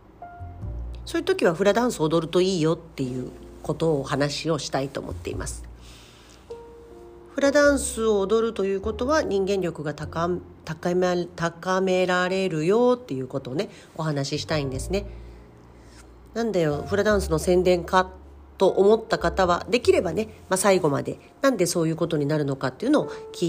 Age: 40-59